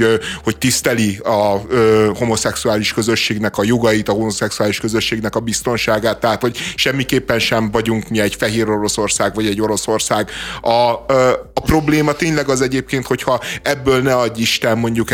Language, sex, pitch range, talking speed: Hungarian, male, 110-125 Hz, 145 wpm